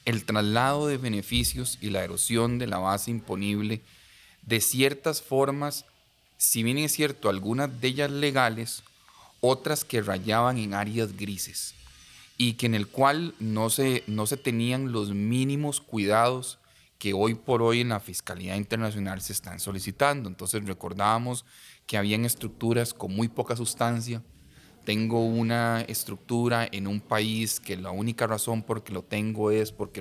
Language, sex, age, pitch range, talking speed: Spanish, male, 30-49, 105-125 Hz, 155 wpm